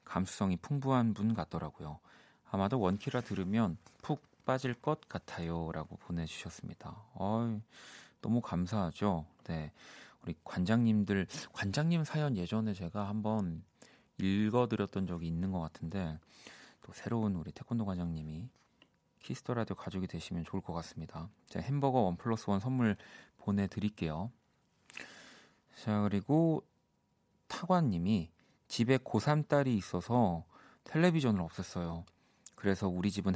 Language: Korean